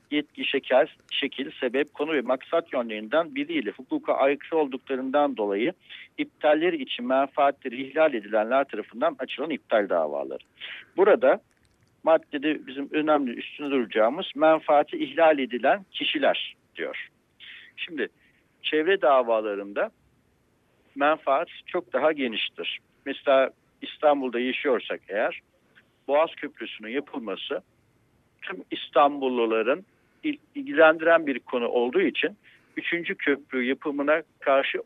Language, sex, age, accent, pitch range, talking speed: Turkish, male, 60-79, native, 130-175 Hz, 100 wpm